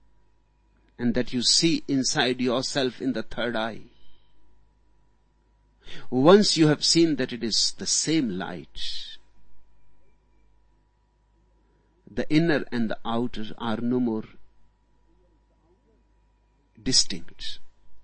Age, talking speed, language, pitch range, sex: 60-79, 95 wpm, Hindi, 120-165 Hz, male